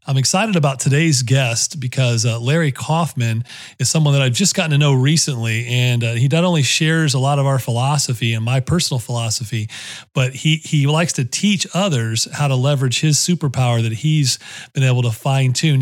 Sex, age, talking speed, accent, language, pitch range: male, 40-59, 195 wpm, American, English, 125-155 Hz